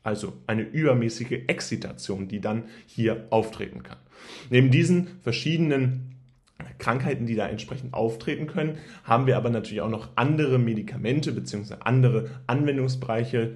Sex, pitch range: male, 105-130 Hz